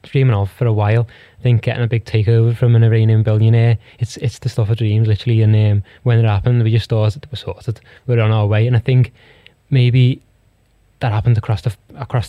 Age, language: 10-29, English